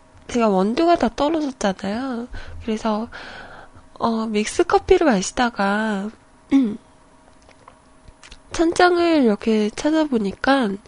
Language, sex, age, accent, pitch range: Korean, female, 20-39, native, 215-295 Hz